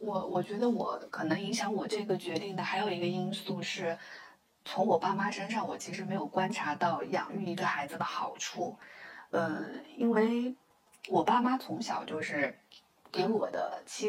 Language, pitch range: Chinese, 185-225 Hz